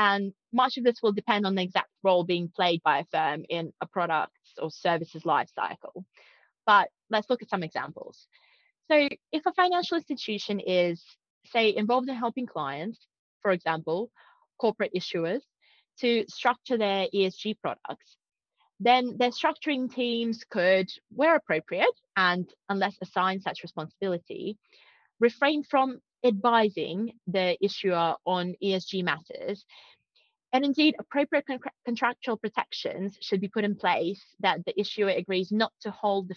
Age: 20-39